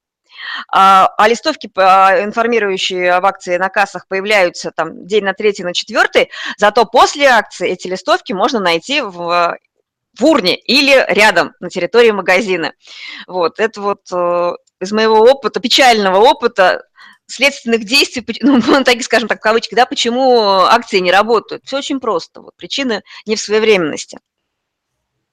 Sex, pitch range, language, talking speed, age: female, 190-255 Hz, Russian, 135 wpm, 20-39